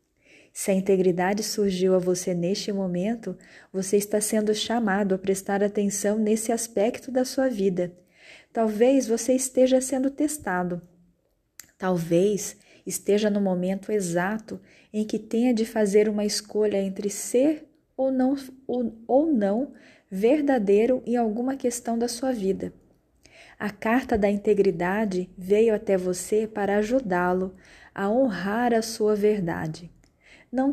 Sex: female